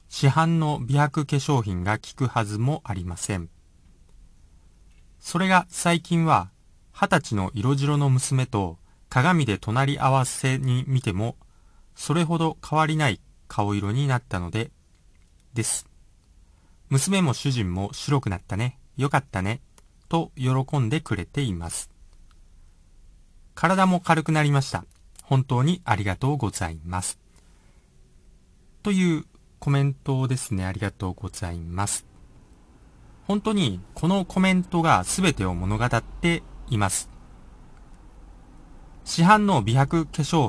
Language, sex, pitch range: Japanese, male, 90-145 Hz